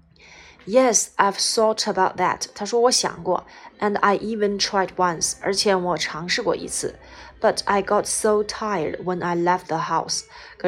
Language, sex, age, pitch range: Chinese, female, 20-39, 180-220 Hz